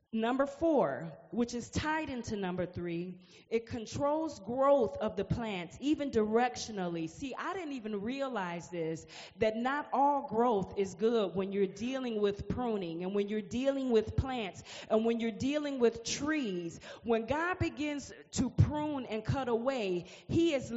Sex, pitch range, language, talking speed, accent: female, 220-285 Hz, English, 160 wpm, American